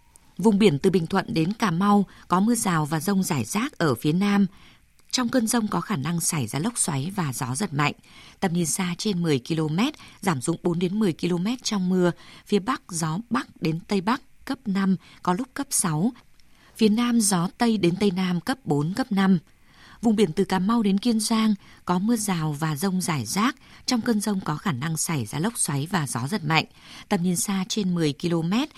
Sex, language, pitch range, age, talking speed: female, Vietnamese, 165-215 Hz, 20-39, 220 wpm